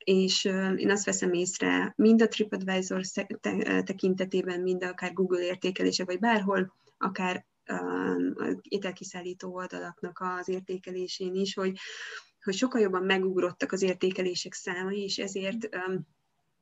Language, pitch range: Hungarian, 180-205 Hz